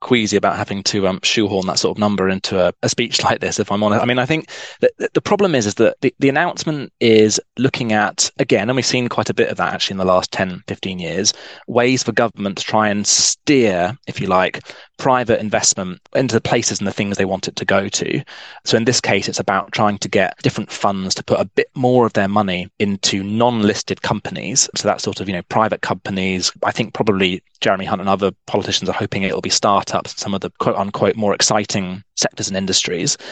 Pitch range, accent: 95-120 Hz, British